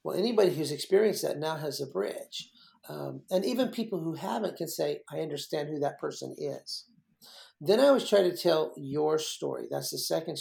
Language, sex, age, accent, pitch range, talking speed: English, male, 50-69, American, 145-200 Hz, 195 wpm